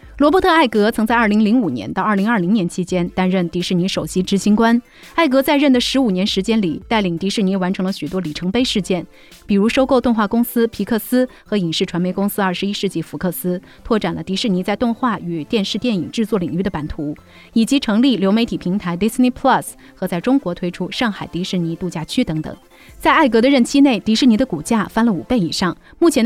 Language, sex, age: Chinese, female, 30-49